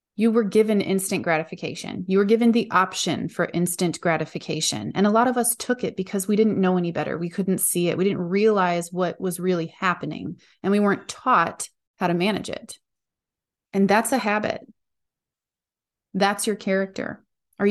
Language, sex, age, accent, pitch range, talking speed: English, female, 30-49, American, 175-210 Hz, 180 wpm